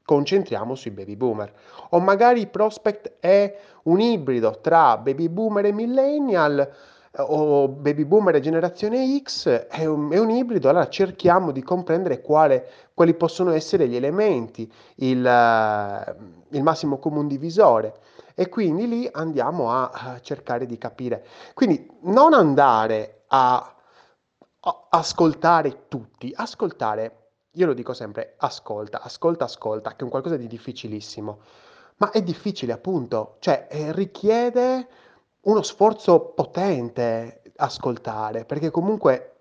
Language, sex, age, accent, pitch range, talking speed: Italian, male, 30-49, native, 115-185 Hz, 125 wpm